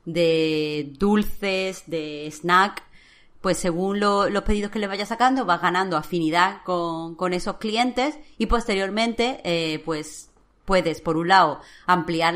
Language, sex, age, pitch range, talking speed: Spanish, female, 30-49, 170-215 Hz, 135 wpm